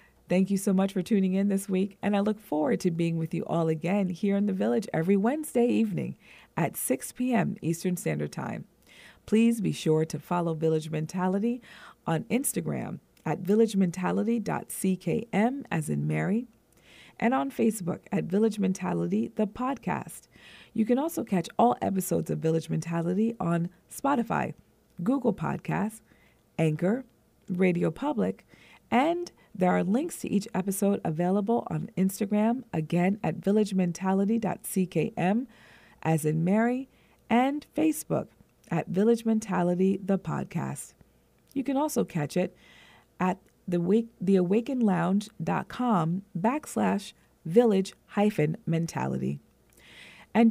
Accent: American